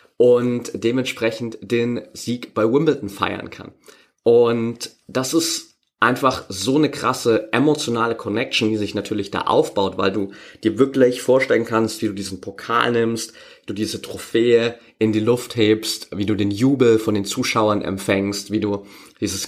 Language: German